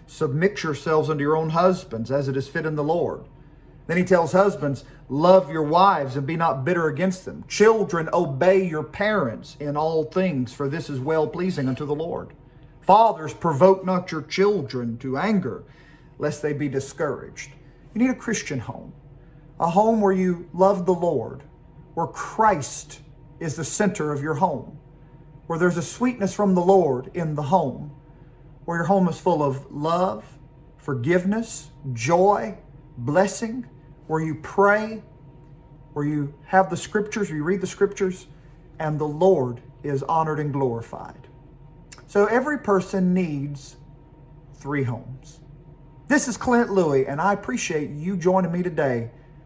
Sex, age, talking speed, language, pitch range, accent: male, 40-59, 155 wpm, English, 140-185 Hz, American